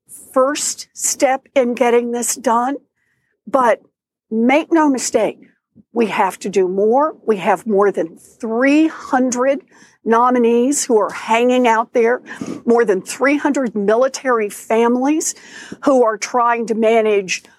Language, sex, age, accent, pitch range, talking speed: English, female, 60-79, American, 220-280 Hz, 125 wpm